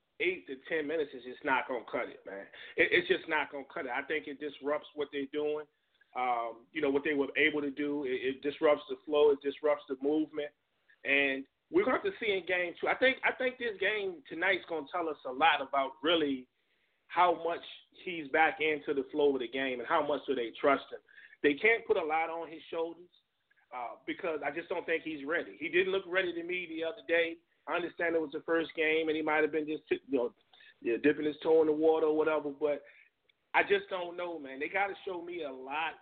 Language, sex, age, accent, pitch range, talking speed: English, male, 30-49, American, 145-190 Hz, 250 wpm